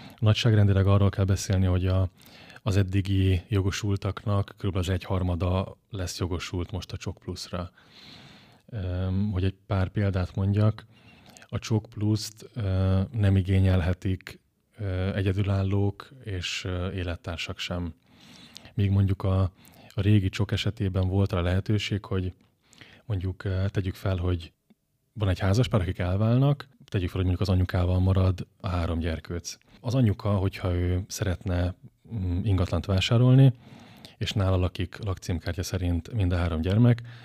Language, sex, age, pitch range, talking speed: Hungarian, male, 20-39, 90-105 Hz, 125 wpm